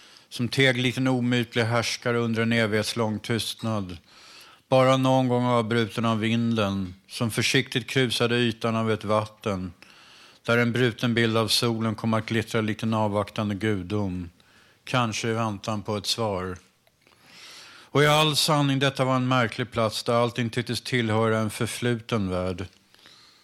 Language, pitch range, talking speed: Swedish, 110-120 Hz, 145 wpm